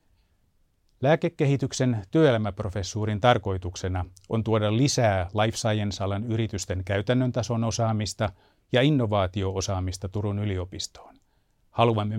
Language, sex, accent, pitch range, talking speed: Finnish, male, native, 100-120 Hz, 85 wpm